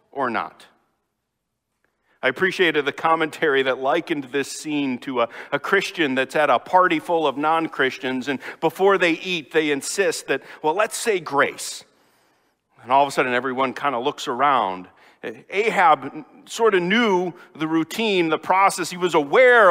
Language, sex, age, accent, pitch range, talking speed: English, male, 50-69, American, 145-210 Hz, 160 wpm